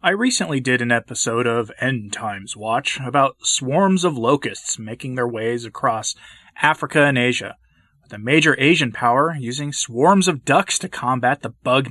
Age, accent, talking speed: 20-39, American, 165 wpm